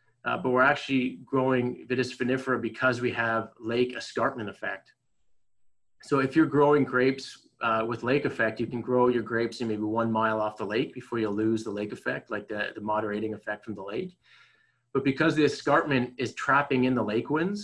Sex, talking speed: male, 195 wpm